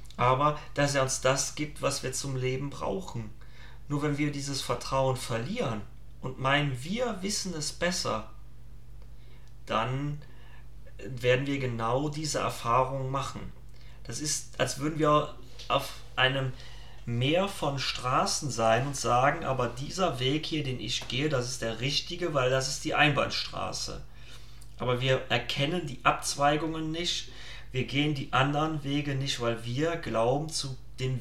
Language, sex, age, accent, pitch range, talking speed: German, male, 30-49, German, 120-145 Hz, 145 wpm